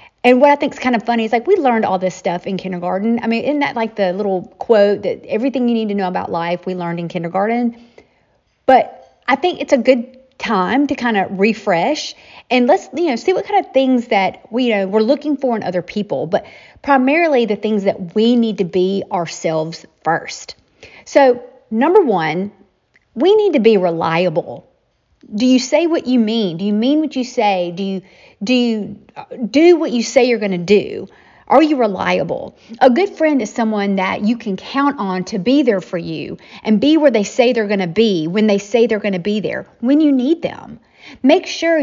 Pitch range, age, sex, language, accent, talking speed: 190-260 Hz, 40-59, female, English, American, 215 wpm